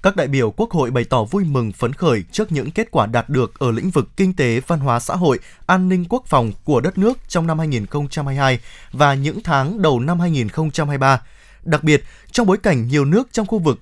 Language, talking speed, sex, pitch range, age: Vietnamese, 225 wpm, male, 135-195 Hz, 20-39